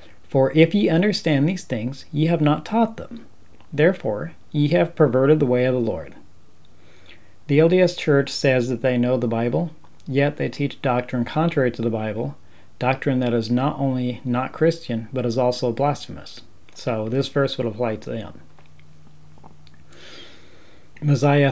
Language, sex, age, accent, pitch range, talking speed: English, male, 40-59, American, 115-145 Hz, 155 wpm